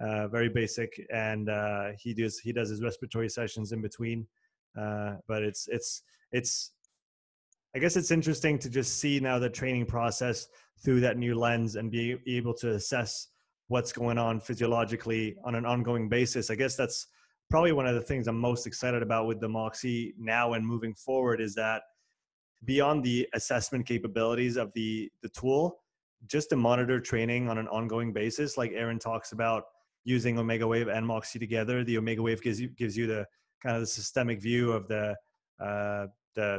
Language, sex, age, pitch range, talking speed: French, male, 20-39, 110-125 Hz, 180 wpm